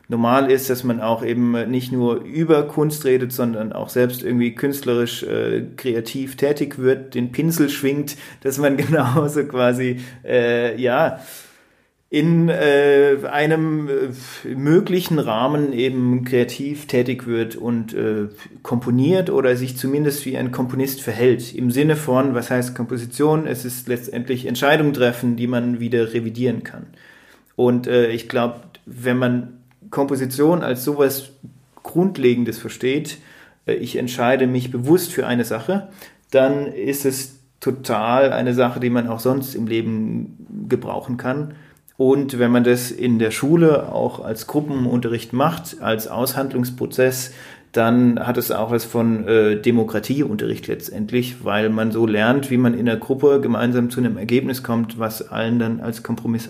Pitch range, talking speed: 120-140 Hz, 145 wpm